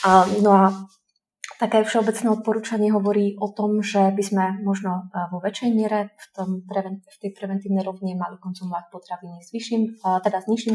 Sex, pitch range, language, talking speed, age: female, 185-205 Hz, Slovak, 155 wpm, 20-39